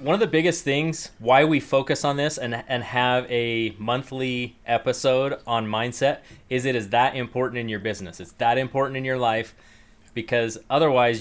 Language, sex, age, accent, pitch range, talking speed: English, male, 20-39, American, 110-135 Hz, 180 wpm